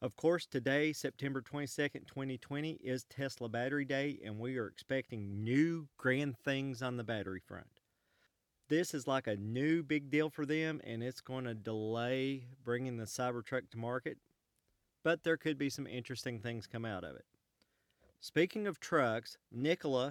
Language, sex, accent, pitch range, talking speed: English, male, American, 115-150 Hz, 160 wpm